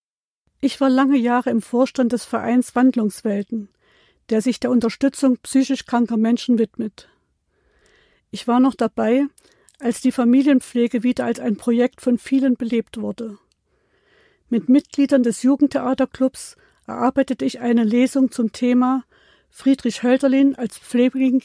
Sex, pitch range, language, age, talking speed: female, 230-265 Hz, German, 50-69, 130 wpm